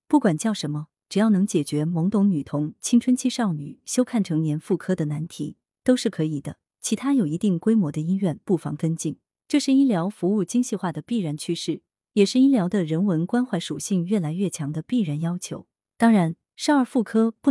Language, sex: Chinese, female